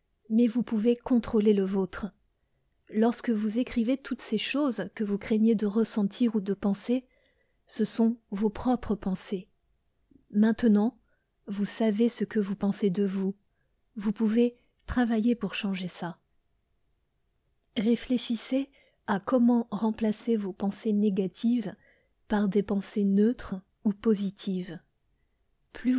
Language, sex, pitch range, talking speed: French, female, 200-230 Hz, 125 wpm